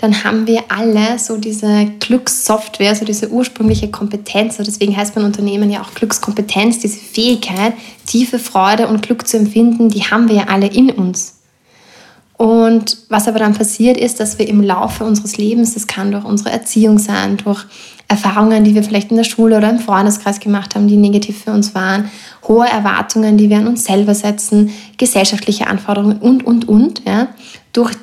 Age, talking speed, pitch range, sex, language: 20-39, 180 wpm, 210-235 Hz, female, German